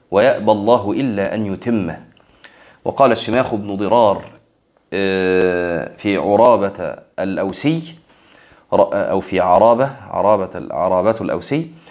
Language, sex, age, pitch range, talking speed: Arabic, male, 30-49, 105-145 Hz, 90 wpm